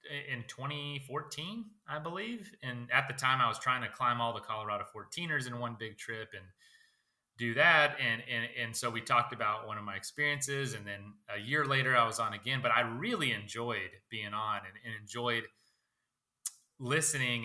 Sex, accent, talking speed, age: male, American, 185 wpm, 30-49